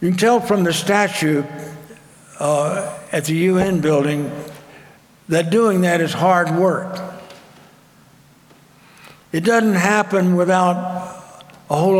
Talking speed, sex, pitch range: 115 wpm, male, 155-190 Hz